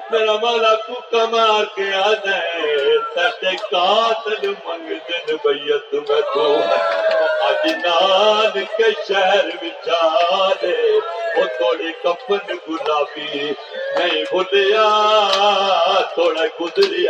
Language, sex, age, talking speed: Urdu, male, 50-69, 35 wpm